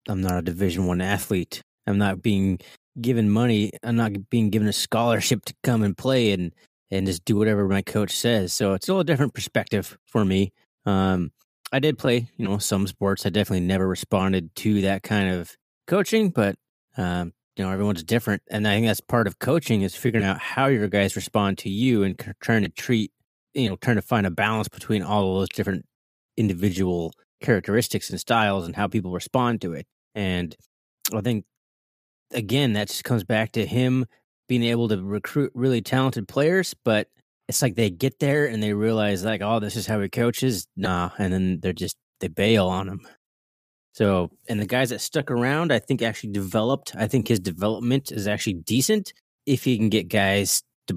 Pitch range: 95-120 Hz